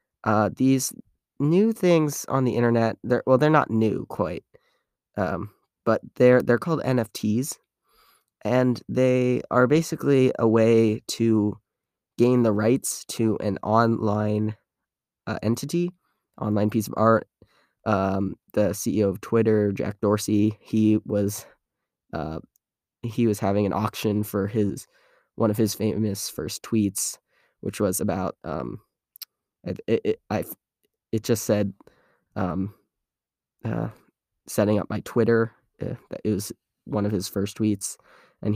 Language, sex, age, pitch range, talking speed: English, male, 20-39, 100-115 Hz, 130 wpm